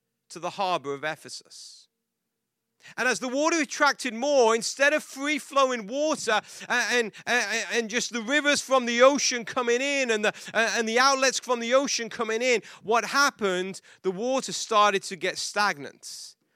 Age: 30-49